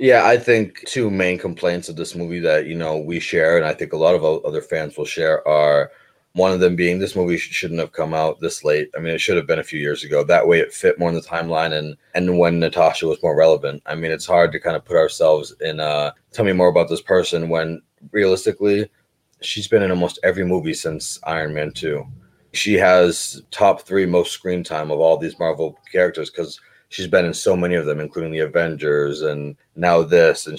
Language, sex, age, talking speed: English, male, 30-49, 230 wpm